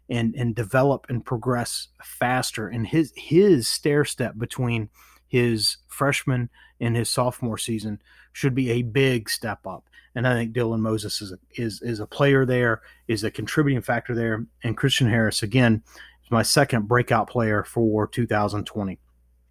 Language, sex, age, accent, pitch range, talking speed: English, male, 30-49, American, 110-130 Hz, 160 wpm